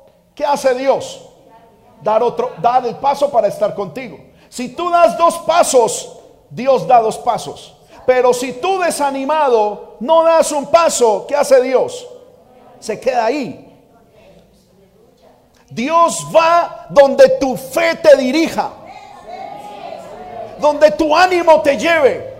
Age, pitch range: 50-69, 265-335 Hz